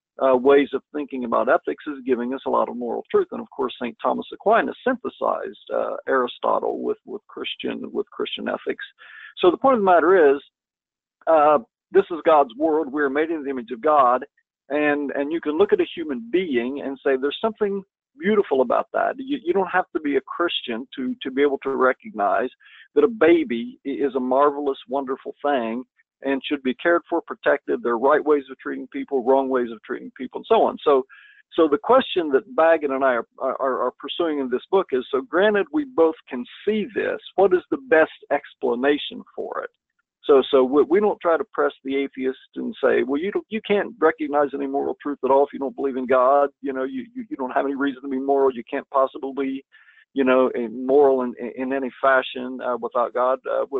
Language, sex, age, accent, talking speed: English, male, 50-69, American, 220 wpm